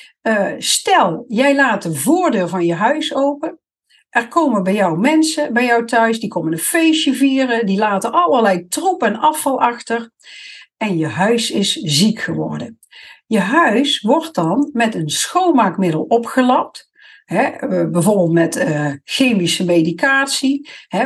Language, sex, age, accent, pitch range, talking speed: Dutch, female, 60-79, Dutch, 185-275 Hz, 145 wpm